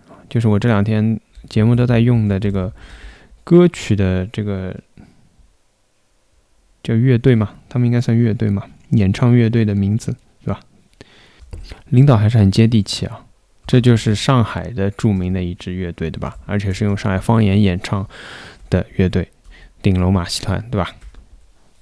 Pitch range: 90-115 Hz